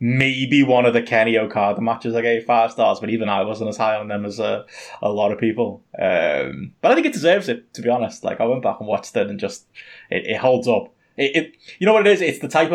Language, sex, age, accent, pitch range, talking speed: English, male, 20-39, British, 110-130 Hz, 275 wpm